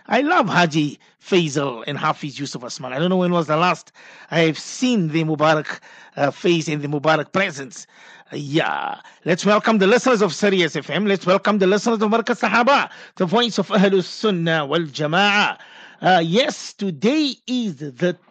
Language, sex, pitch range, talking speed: English, male, 170-235 Hz, 175 wpm